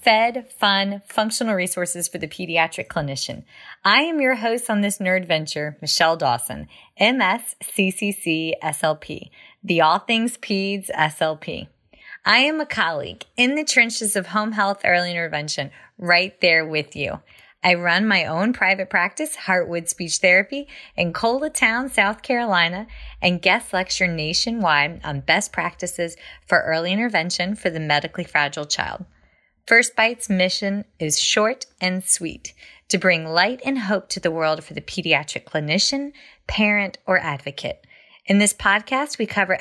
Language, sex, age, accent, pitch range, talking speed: English, female, 30-49, American, 165-220 Hz, 145 wpm